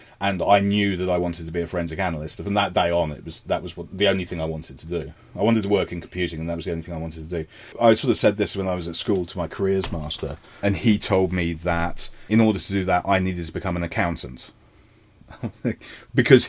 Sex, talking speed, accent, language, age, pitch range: male, 275 wpm, British, English, 30-49, 85-110 Hz